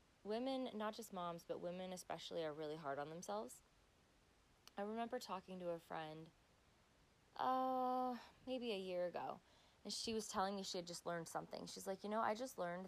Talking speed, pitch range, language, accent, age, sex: 185 wpm, 165-200 Hz, English, American, 20-39, female